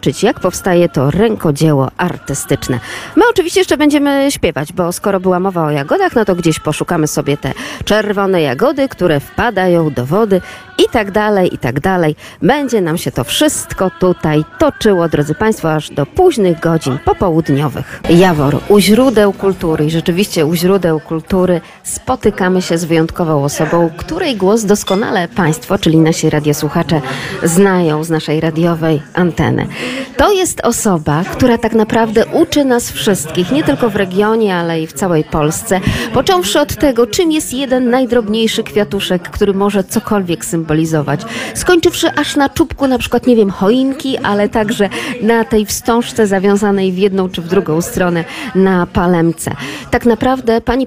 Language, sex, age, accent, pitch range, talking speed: Polish, female, 40-59, native, 165-225 Hz, 155 wpm